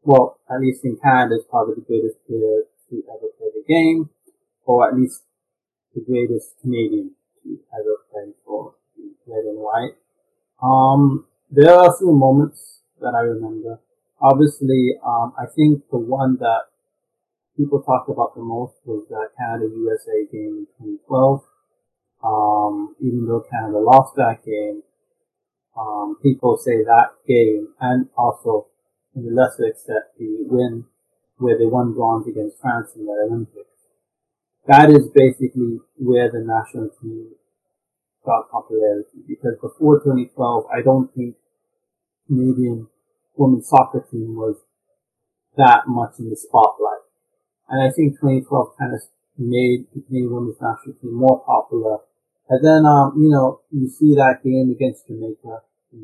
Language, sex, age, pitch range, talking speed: English, male, 30-49, 115-155 Hz, 145 wpm